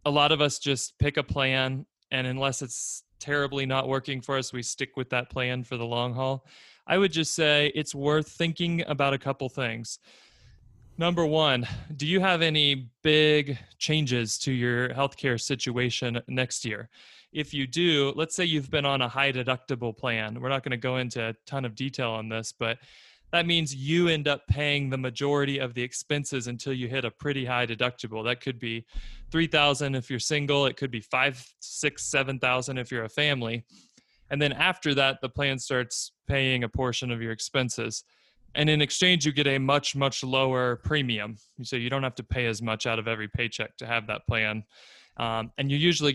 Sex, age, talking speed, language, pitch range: male, 20-39, 205 wpm, English, 120-145 Hz